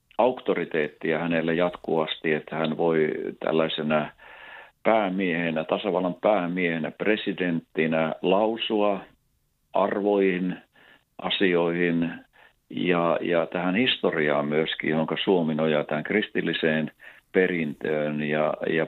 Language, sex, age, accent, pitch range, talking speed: Finnish, male, 50-69, native, 80-95 Hz, 85 wpm